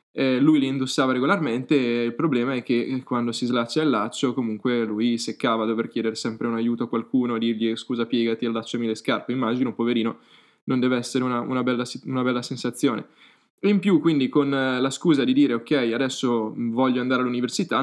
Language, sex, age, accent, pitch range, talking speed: Italian, male, 10-29, native, 120-150 Hz, 200 wpm